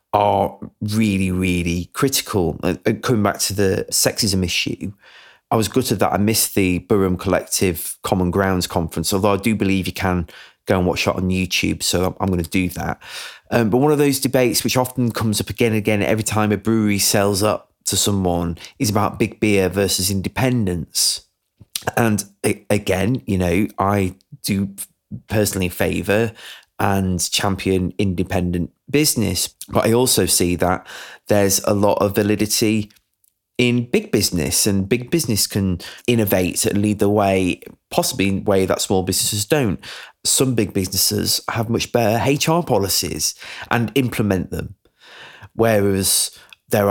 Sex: male